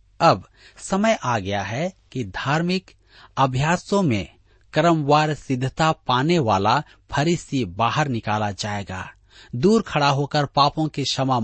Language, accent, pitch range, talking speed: Hindi, native, 110-160 Hz, 120 wpm